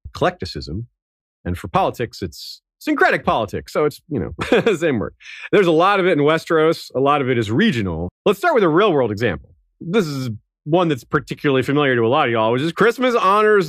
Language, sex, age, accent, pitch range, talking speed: English, male, 30-49, American, 130-185 Hz, 210 wpm